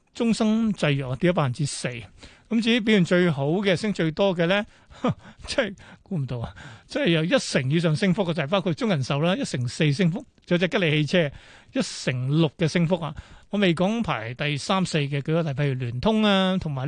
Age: 30-49